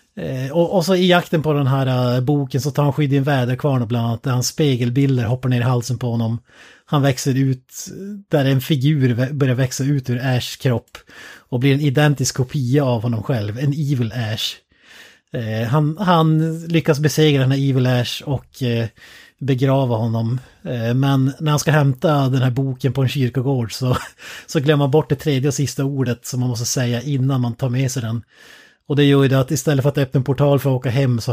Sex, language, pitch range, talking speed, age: male, Swedish, 125-145 Hz, 200 wpm, 30-49